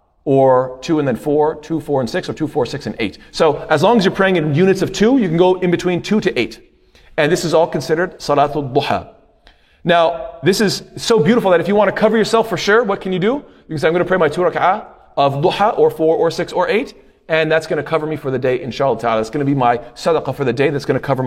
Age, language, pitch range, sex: 30-49, English, 140-195 Hz, male